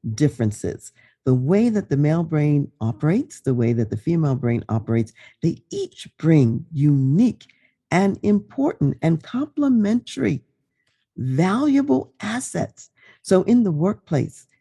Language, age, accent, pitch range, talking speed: English, 50-69, American, 120-180 Hz, 120 wpm